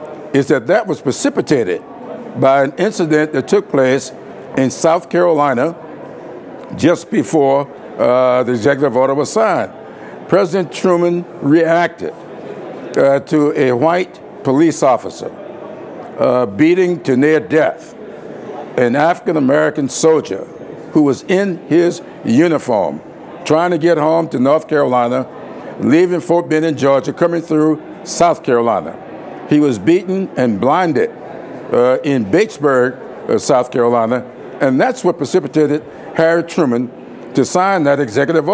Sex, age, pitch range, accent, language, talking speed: male, 60-79, 140-175 Hz, American, English, 125 wpm